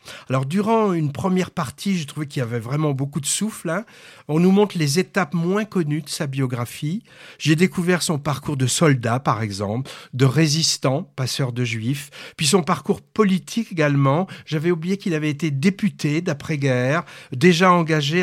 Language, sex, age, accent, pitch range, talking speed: French, male, 60-79, French, 135-180 Hz, 170 wpm